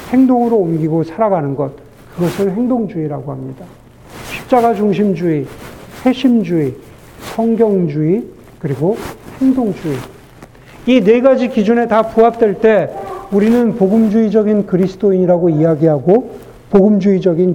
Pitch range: 170-240 Hz